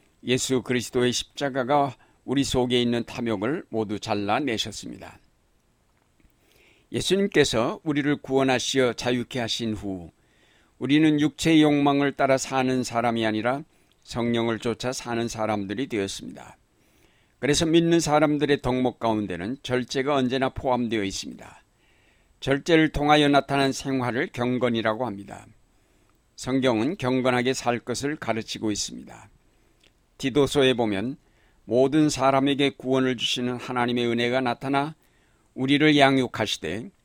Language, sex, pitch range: Korean, male, 115-140 Hz